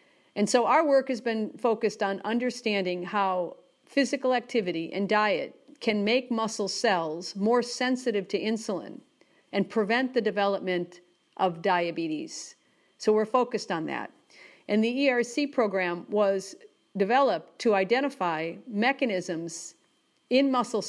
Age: 50-69